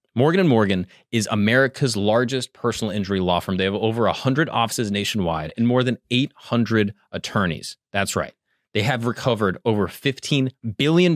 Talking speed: 165 wpm